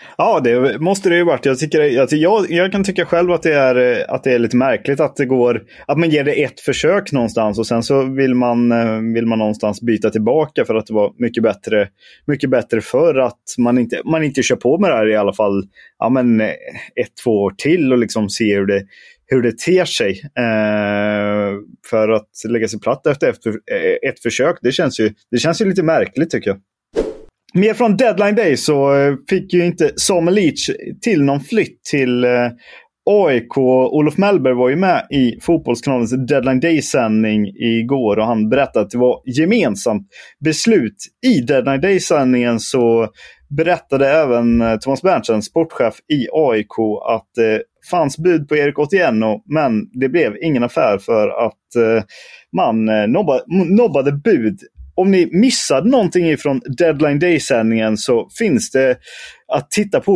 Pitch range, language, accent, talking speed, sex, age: 115-170 Hz, Swedish, native, 170 wpm, male, 20-39